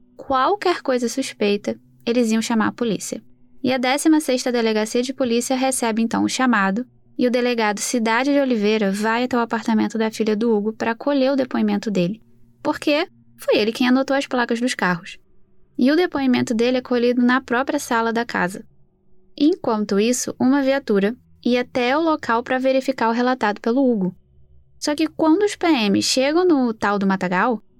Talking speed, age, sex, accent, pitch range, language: 175 wpm, 10-29, female, Brazilian, 210-265 Hz, Portuguese